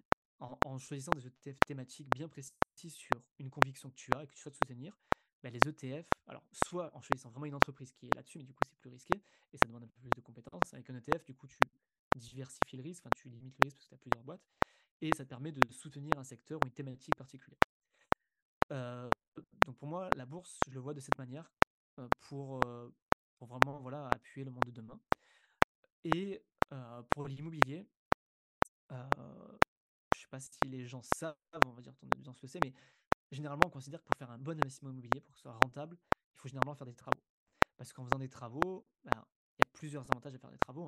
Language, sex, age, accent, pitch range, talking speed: French, male, 20-39, French, 125-150 Hz, 220 wpm